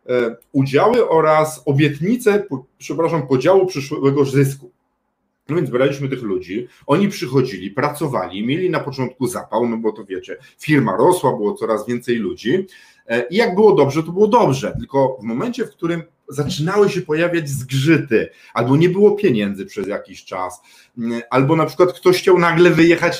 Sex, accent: male, native